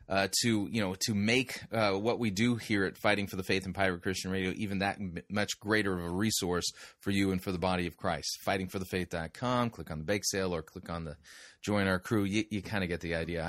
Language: English